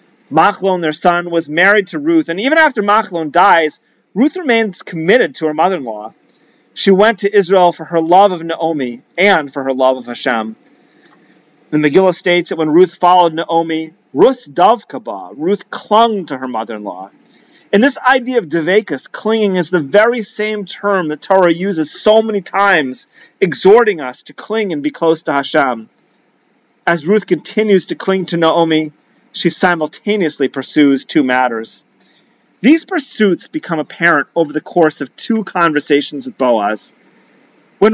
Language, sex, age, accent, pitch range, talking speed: English, male, 40-59, American, 160-220 Hz, 155 wpm